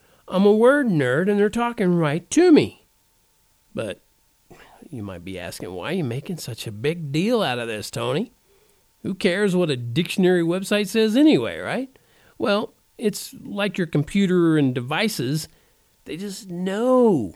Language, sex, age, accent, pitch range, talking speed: English, male, 50-69, American, 125-205 Hz, 160 wpm